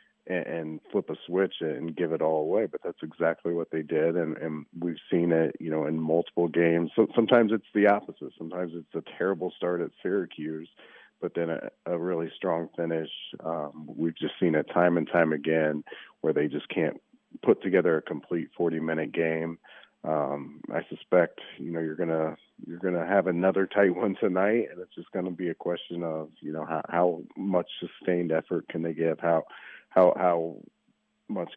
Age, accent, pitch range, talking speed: 40-59, American, 80-90 Hz, 195 wpm